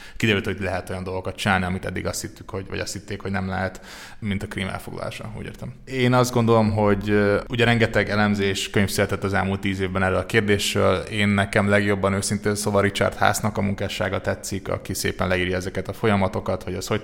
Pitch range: 95-105 Hz